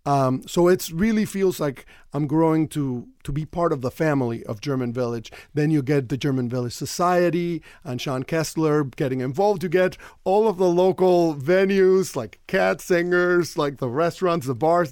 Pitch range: 140-175 Hz